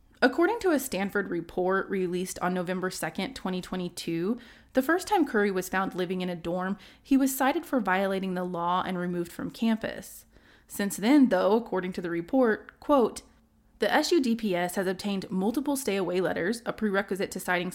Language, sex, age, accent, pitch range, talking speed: English, female, 20-39, American, 185-260 Hz, 170 wpm